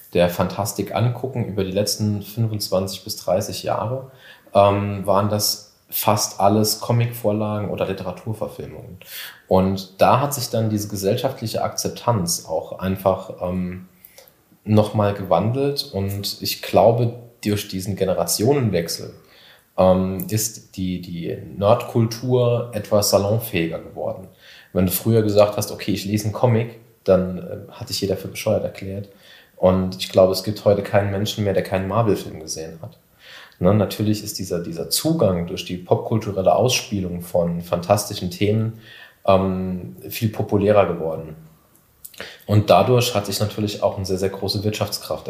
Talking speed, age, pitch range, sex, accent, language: 140 wpm, 30-49, 95-110 Hz, male, German, German